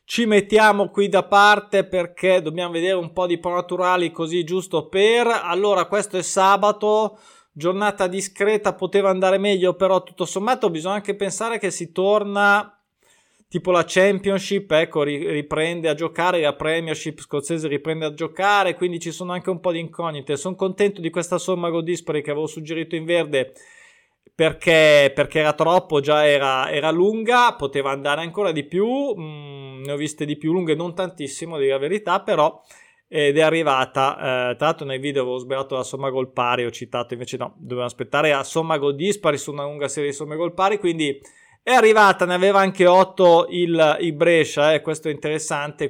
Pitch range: 155-195 Hz